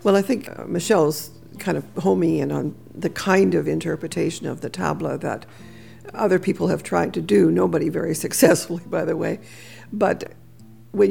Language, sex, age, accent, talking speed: English, female, 60-79, American, 175 wpm